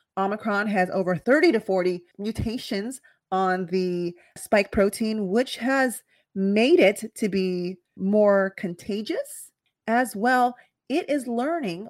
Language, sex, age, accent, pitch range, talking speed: English, female, 30-49, American, 185-260 Hz, 120 wpm